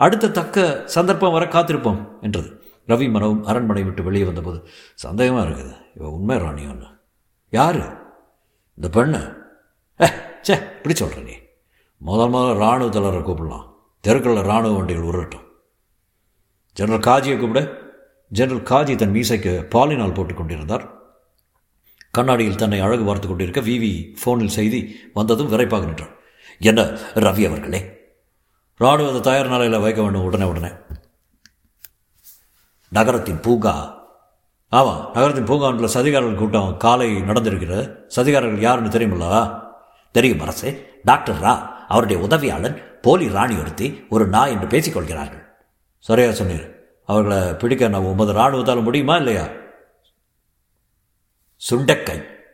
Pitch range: 95-125 Hz